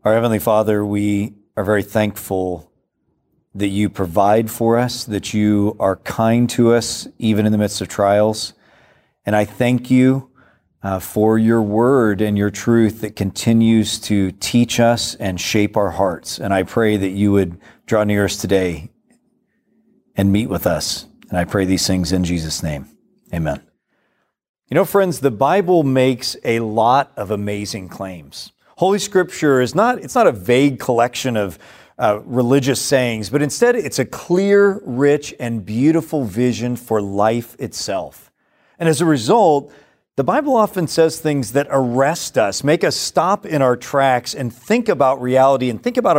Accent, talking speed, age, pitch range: American, 165 wpm, 40-59, 105-140 Hz